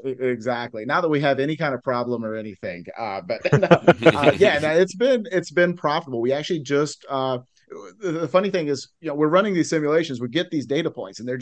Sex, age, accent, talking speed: male, 30-49, American, 215 wpm